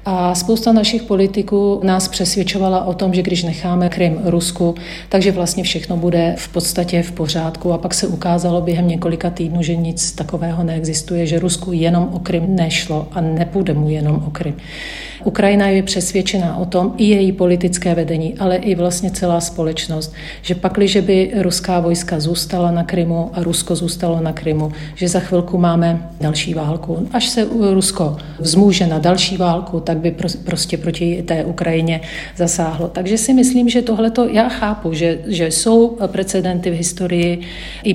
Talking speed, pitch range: 170 wpm, 165-185 Hz